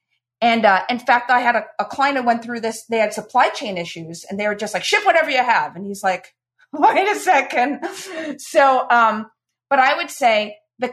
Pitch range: 190-250 Hz